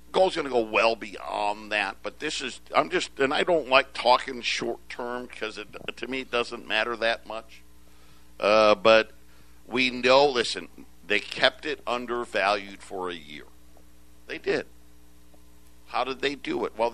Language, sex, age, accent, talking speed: English, male, 50-69, American, 165 wpm